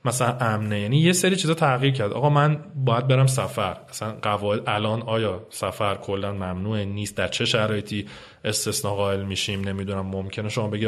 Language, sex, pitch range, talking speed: Persian, male, 105-140 Hz, 170 wpm